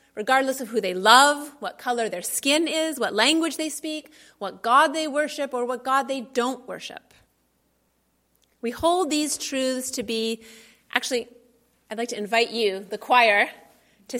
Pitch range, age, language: 210-265 Hz, 30-49, English